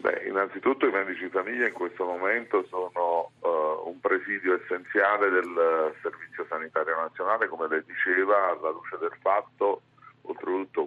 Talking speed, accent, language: 150 wpm, native, Italian